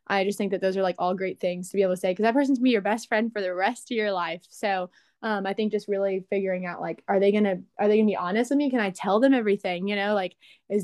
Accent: American